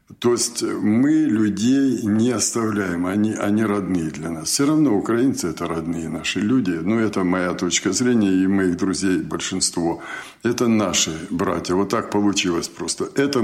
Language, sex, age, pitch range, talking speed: Russian, male, 60-79, 100-125 Hz, 155 wpm